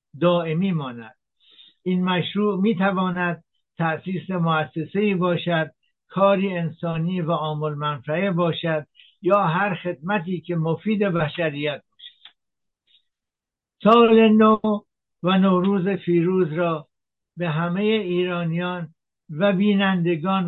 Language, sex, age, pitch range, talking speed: Persian, male, 60-79, 155-180 Hz, 95 wpm